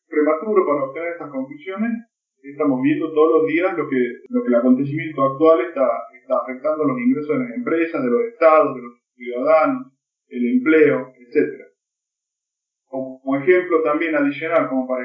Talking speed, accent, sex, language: 160 wpm, Argentinian, male, Portuguese